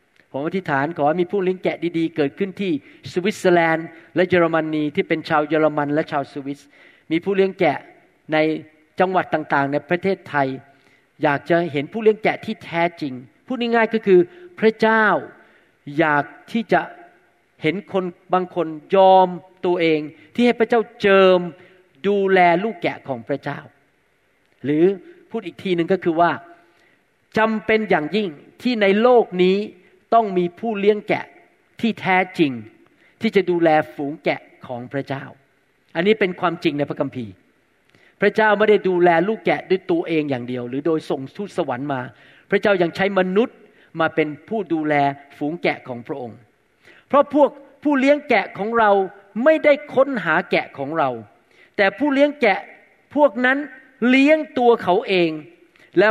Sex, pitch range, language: male, 155-215 Hz, Thai